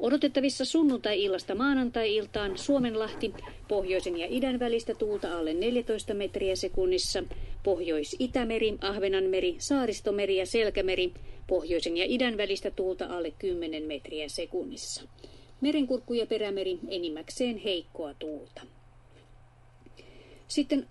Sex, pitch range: female, 185-245 Hz